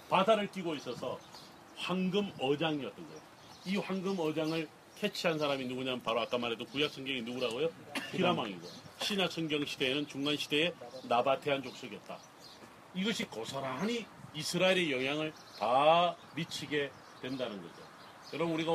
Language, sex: Korean, male